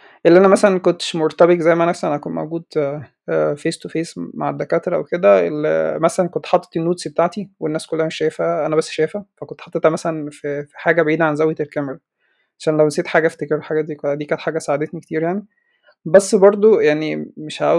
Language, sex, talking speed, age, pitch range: Arabic, male, 185 wpm, 20-39, 150-175 Hz